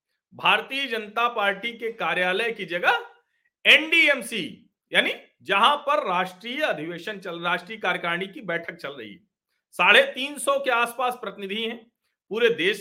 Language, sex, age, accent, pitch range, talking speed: Hindi, male, 50-69, native, 180-265 Hz, 140 wpm